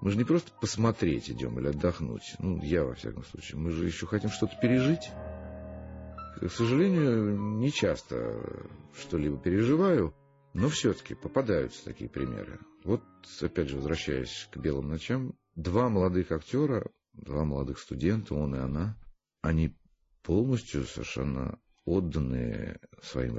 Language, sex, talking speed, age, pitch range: Russian, male, 130 wpm, 50-69, 80-110 Hz